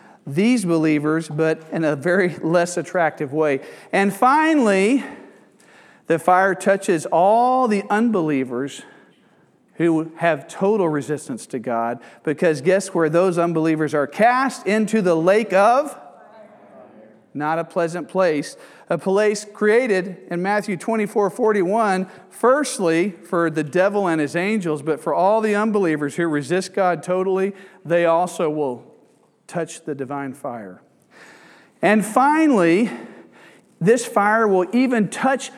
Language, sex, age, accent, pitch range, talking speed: English, male, 50-69, American, 165-215 Hz, 125 wpm